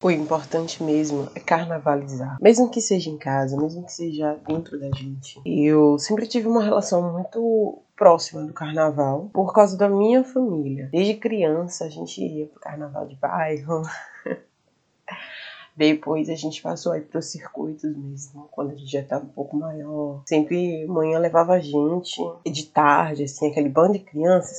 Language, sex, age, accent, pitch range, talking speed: Portuguese, female, 20-39, Brazilian, 145-175 Hz, 165 wpm